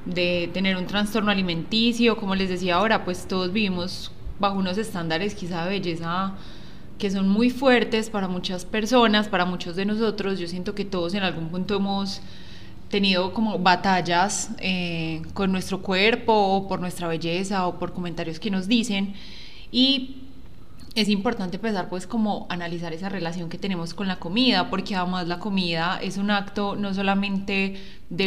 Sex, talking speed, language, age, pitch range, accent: female, 165 wpm, Spanish, 20-39, 180-210 Hz, Colombian